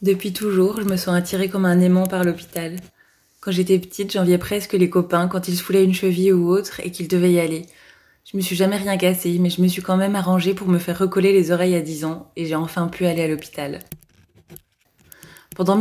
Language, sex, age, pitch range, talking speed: French, female, 20-39, 175-190 Hz, 230 wpm